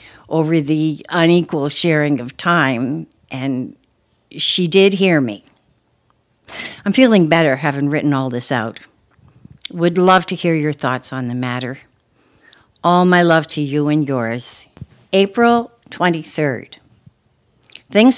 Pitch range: 135-175 Hz